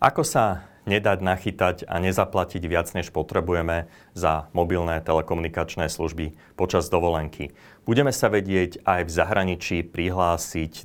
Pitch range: 80-95 Hz